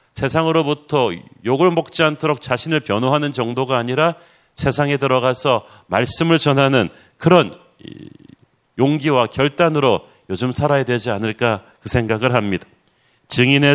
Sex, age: male, 40-59